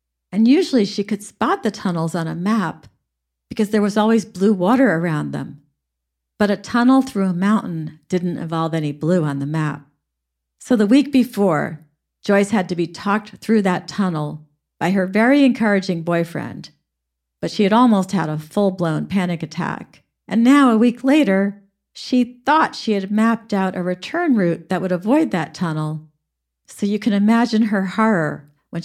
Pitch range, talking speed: 155-215 Hz, 175 wpm